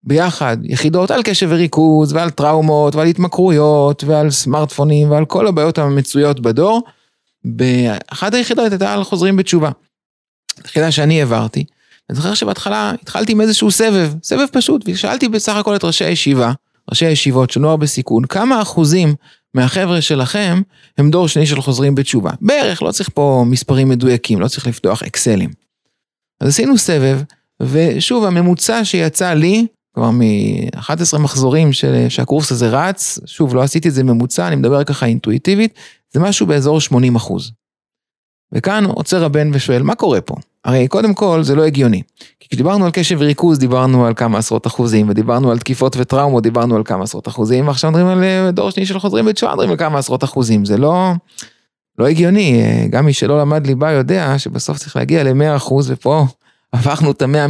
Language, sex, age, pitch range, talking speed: Hebrew, male, 30-49, 130-180 Hz, 160 wpm